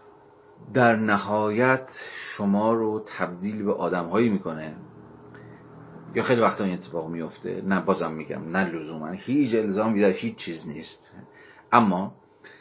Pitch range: 95-125 Hz